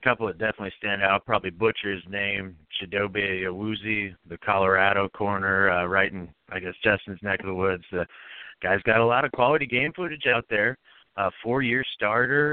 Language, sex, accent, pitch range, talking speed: English, male, American, 100-120 Hz, 195 wpm